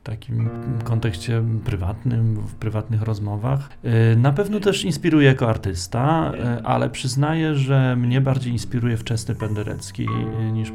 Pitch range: 110-125 Hz